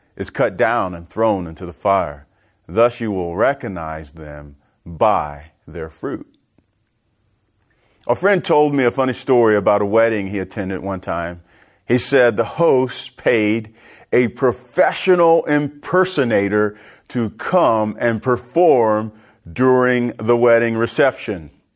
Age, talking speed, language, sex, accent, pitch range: 40-59, 125 wpm, English, male, American, 110-180 Hz